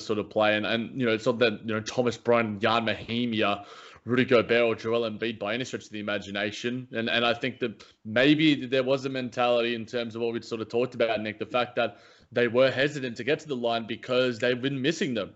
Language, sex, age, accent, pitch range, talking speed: English, male, 20-39, Australian, 115-130 Hz, 245 wpm